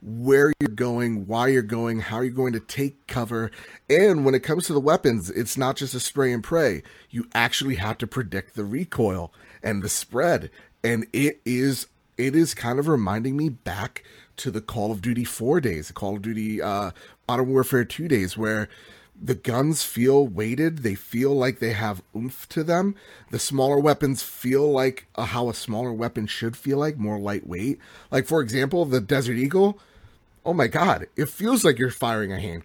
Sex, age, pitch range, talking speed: male, 30-49, 110-135 Hz, 190 wpm